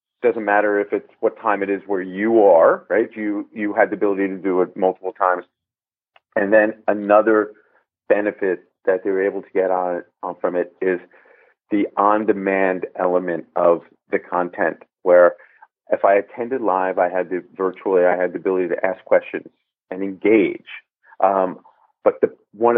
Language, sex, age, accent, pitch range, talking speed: English, male, 40-59, American, 95-125 Hz, 175 wpm